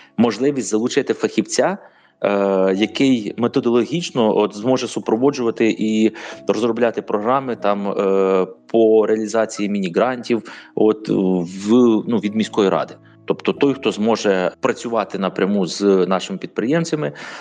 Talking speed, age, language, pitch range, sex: 105 wpm, 30-49, Ukrainian, 90-115 Hz, male